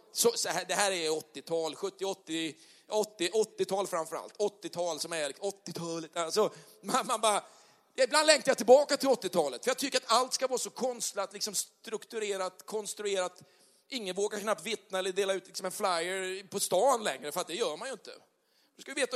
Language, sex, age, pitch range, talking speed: Swedish, male, 40-59, 185-245 Hz, 190 wpm